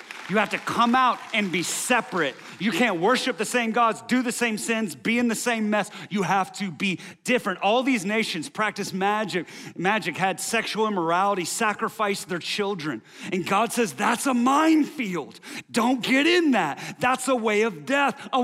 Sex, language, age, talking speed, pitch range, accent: male, English, 30-49, 180 wpm, 145-225 Hz, American